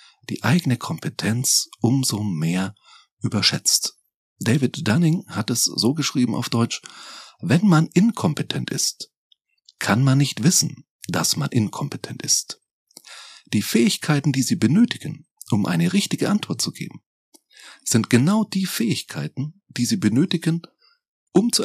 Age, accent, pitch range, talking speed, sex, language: 40-59, German, 115-175 Hz, 130 wpm, male, German